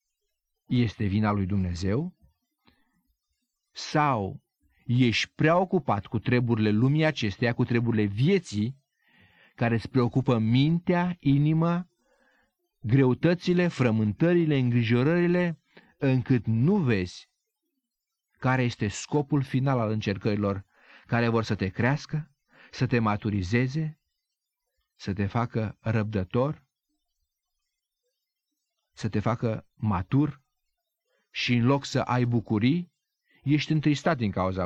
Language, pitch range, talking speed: Romanian, 110-160 Hz, 100 wpm